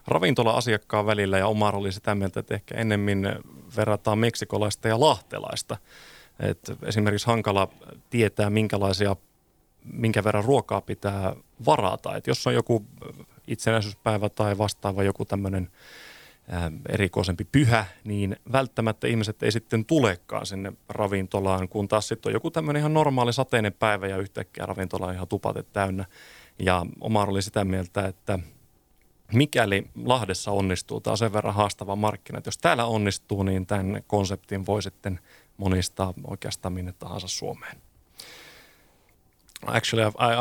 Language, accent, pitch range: Finnish, native, 95-115 Hz